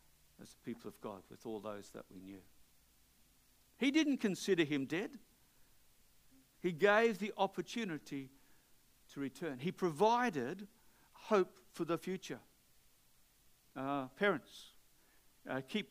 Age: 60-79